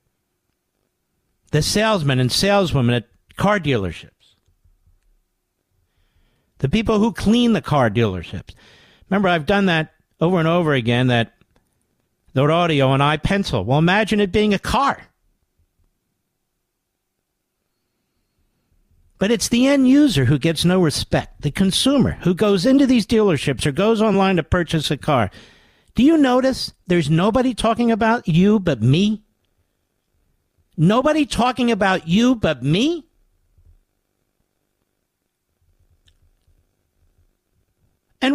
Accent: American